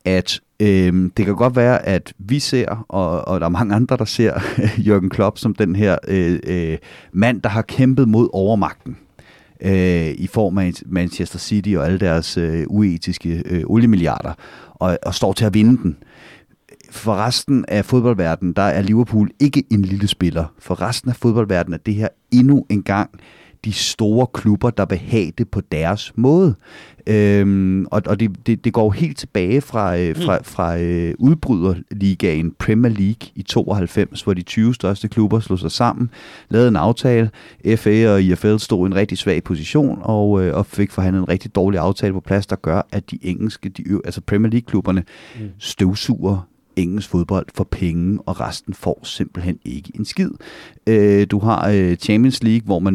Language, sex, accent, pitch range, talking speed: Danish, male, native, 95-115 Hz, 170 wpm